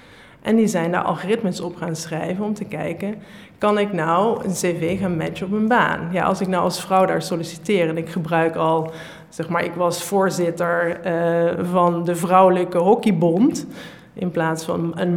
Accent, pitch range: Dutch, 170-205 Hz